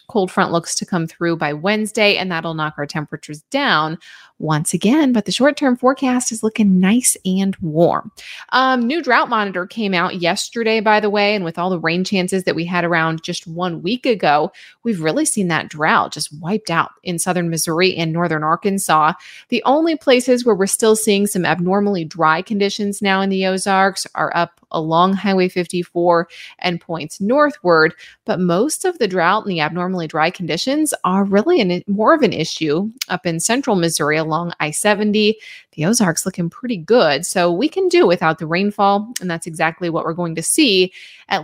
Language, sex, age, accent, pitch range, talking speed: English, female, 20-39, American, 170-215 Hz, 185 wpm